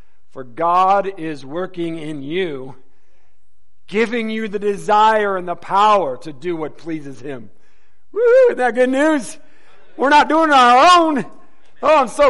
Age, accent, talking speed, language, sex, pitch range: 50-69, American, 160 wpm, English, male, 150-245 Hz